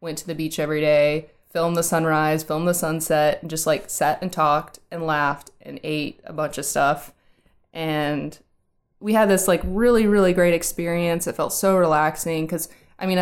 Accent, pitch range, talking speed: American, 155-180 Hz, 190 wpm